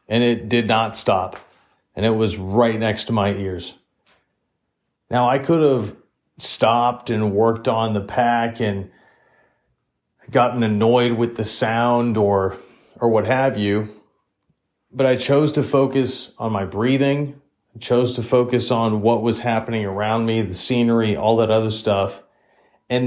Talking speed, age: 155 wpm, 40-59